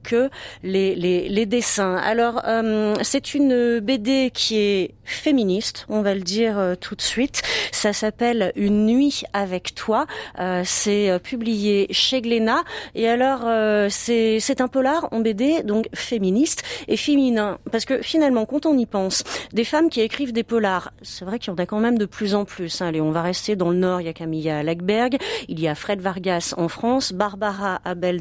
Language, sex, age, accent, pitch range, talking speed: French, female, 40-59, French, 185-235 Hz, 200 wpm